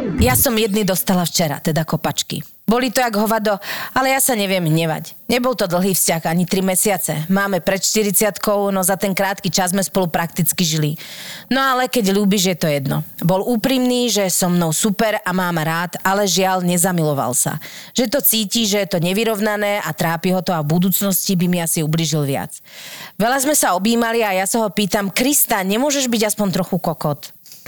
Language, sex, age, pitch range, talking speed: Slovak, female, 30-49, 170-215 Hz, 195 wpm